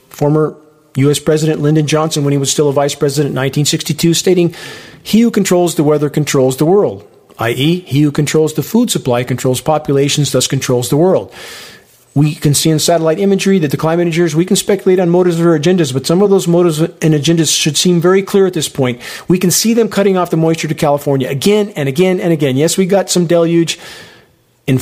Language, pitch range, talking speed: English, 150-180 Hz, 215 wpm